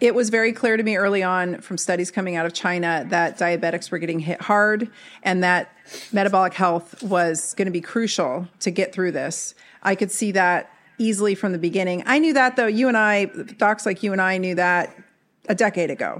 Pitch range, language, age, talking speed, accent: 180-215 Hz, English, 40-59, 215 wpm, American